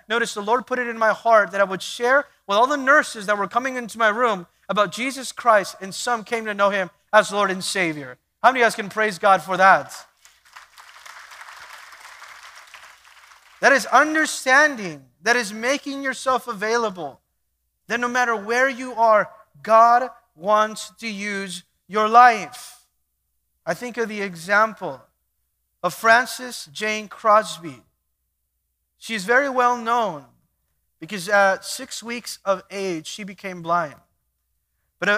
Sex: male